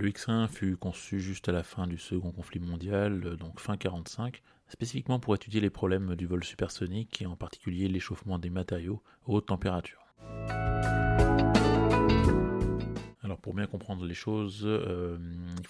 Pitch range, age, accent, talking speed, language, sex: 90-110 Hz, 30-49, French, 155 wpm, French, male